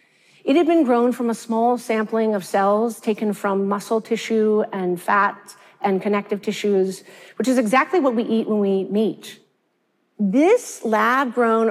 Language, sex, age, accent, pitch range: Korean, female, 40-59, American, 205-245 Hz